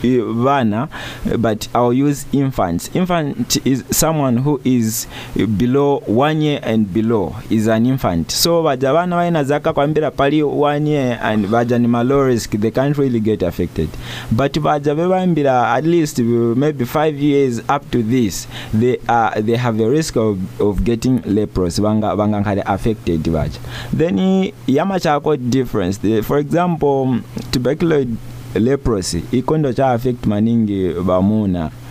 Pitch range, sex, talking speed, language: 115-145 Hz, male, 125 wpm, English